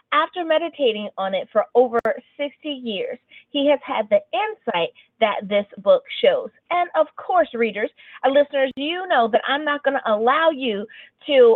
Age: 30-49